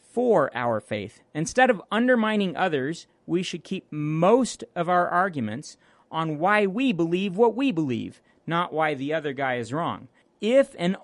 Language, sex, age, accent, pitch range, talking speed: English, male, 40-59, American, 145-190 Hz, 165 wpm